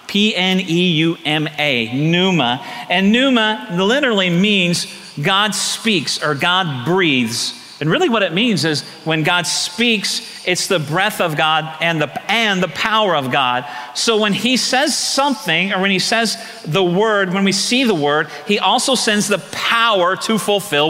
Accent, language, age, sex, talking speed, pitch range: American, English, 40-59, male, 155 wpm, 175-215 Hz